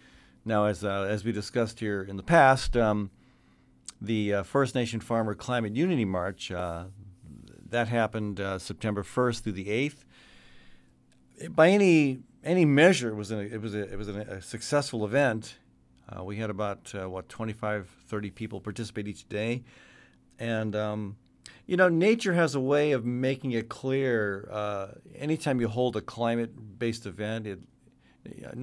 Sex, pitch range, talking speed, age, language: male, 100-125 Hz, 160 wpm, 50-69, English